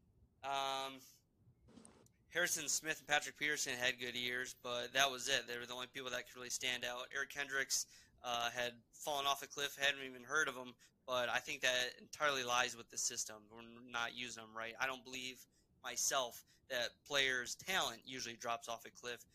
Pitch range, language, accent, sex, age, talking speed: 120-135 Hz, English, American, male, 20-39, 190 wpm